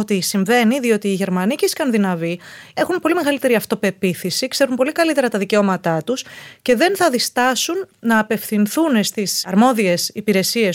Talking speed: 150 wpm